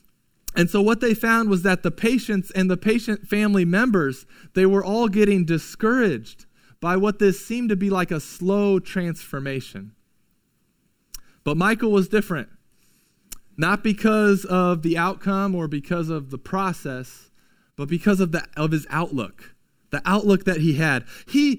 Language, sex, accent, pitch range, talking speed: English, male, American, 175-220 Hz, 155 wpm